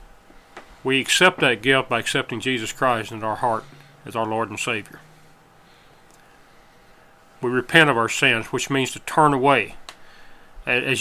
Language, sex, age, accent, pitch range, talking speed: English, male, 40-59, American, 115-140 Hz, 145 wpm